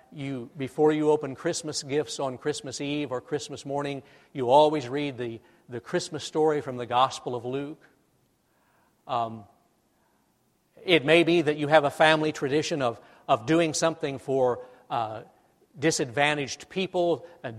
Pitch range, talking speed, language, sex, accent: 130-155 Hz, 145 wpm, English, male, American